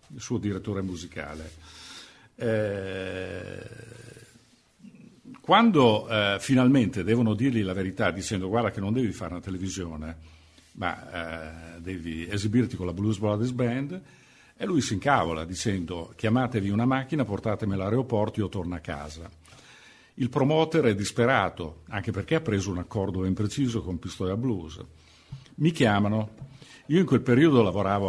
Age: 50-69